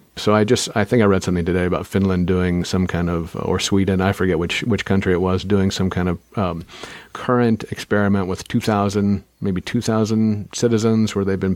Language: English